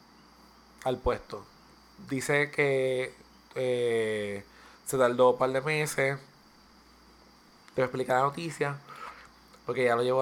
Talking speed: 110 wpm